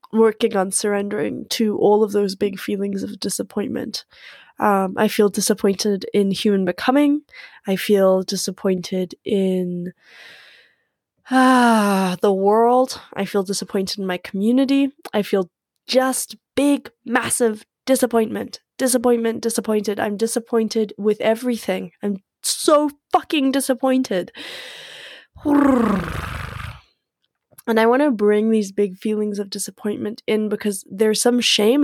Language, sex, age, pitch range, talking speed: English, female, 10-29, 190-230 Hz, 115 wpm